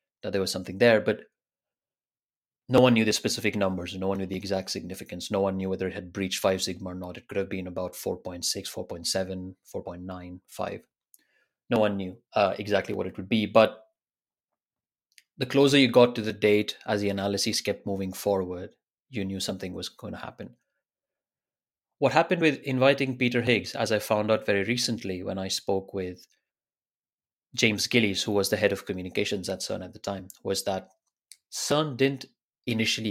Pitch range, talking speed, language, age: 95-115 Hz, 185 wpm, English, 30-49